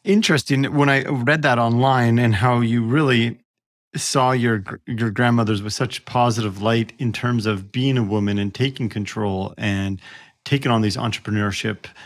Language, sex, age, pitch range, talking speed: English, male, 40-59, 110-140 Hz, 160 wpm